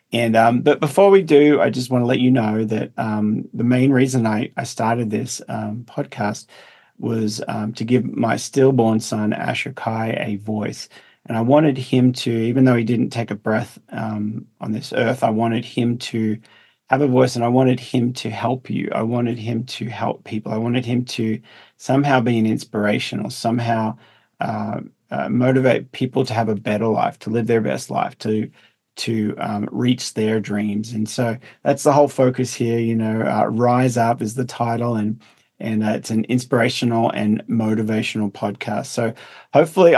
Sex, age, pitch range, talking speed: male, 40-59, 110-125 Hz, 190 wpm